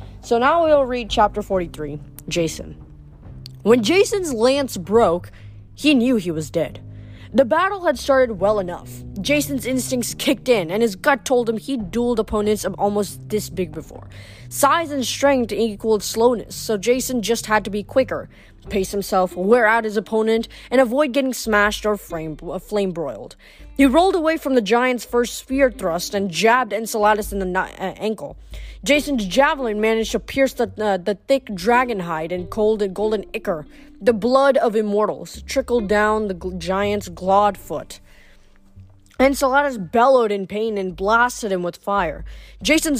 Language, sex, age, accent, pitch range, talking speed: English, female, 20-39, American, 185-250 Hz, 165 wpm